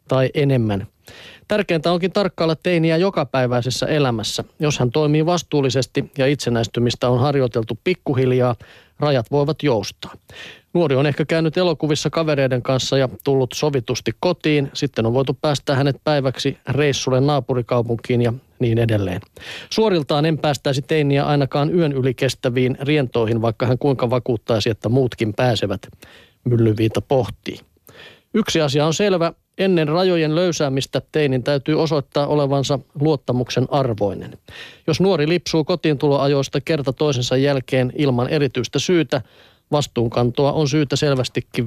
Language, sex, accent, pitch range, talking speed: Finnish, male, native, 125-155 Hz, 125 wpm